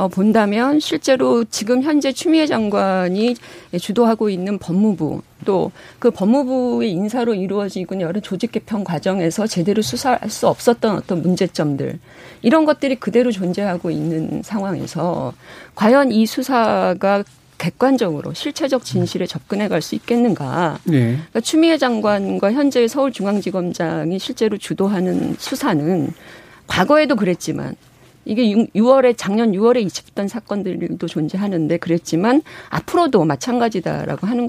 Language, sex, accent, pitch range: Korean, female, native, 180-250 Hz